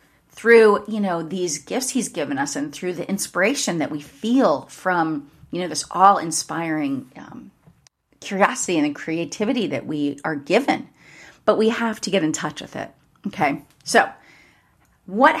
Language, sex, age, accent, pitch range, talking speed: English, female, 30-49, American, 165-235 Hz, 160 wpm